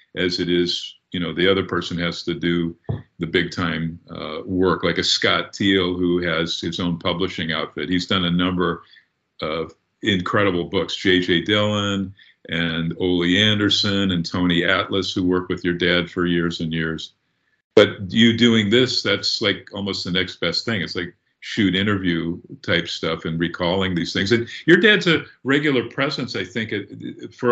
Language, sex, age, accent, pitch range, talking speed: English, male, 50-69, American, 90-105 Hz, 175 wpm